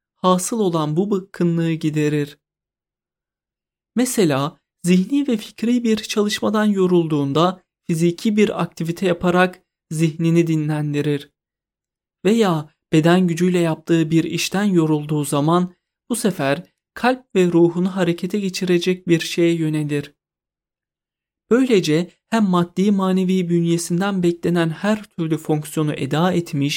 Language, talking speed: Turkish, 105 wpm